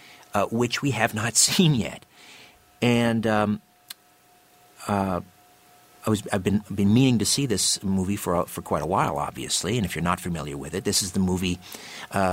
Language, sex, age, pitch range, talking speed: English, male, 50-69, 95-120 Hz, 185 wpm